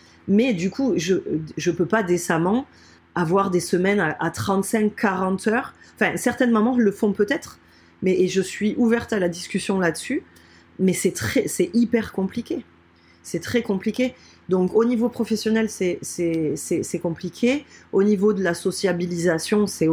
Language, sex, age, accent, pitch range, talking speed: French, female, 30-49, French, 165-210 Hz, 165 wpm